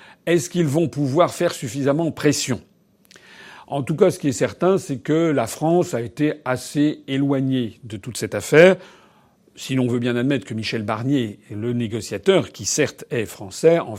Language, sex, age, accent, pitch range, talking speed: French, male, 40-59, French, 120-165 Hz, 175 wpm